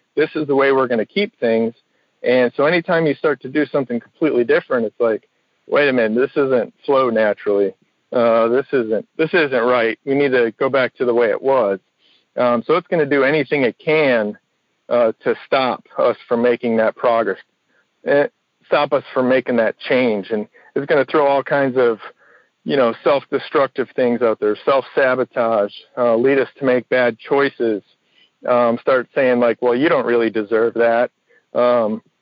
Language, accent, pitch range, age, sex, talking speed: English, American, 115-135 Hz, 40-59, male, 190 wpm